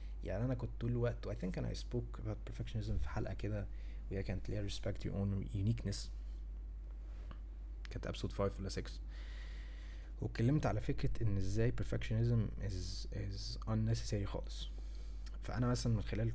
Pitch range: 95-120 Hz